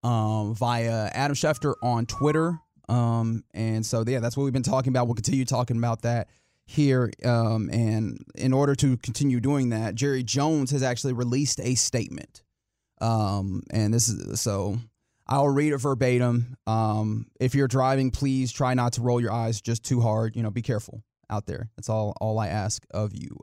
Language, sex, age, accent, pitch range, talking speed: English, male, 20-39, American, 115-140 Hz, 185 wpm